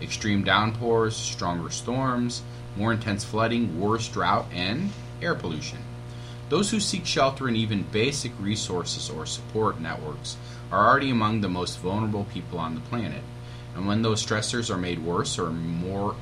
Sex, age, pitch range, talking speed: male, 30-49, 105-120 Hz, 155 wpm